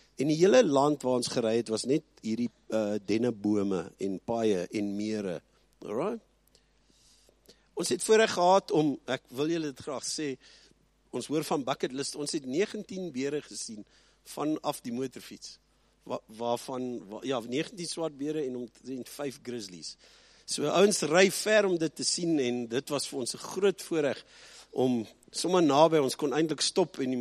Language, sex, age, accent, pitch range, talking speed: English, male, 50-69, Swiss, 125-175 Hz, 160 wpm